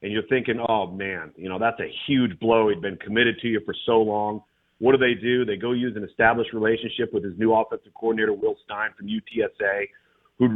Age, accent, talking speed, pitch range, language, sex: 40-59, American, 220 wpm, 115-135 Hz, English, male